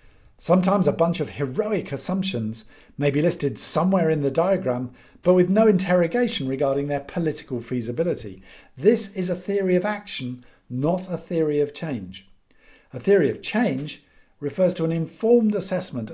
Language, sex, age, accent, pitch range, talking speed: English, male, 50-69, British, 125-175 Hz, 150 wpm